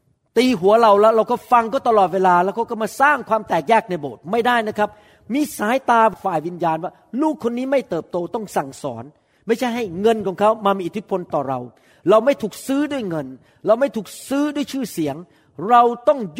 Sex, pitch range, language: male, 155-225 Hz, Thai